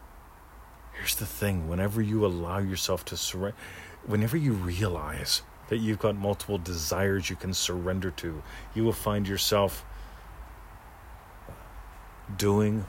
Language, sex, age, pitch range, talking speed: English, male, 40-59, 85-105 Hz, 120 wpm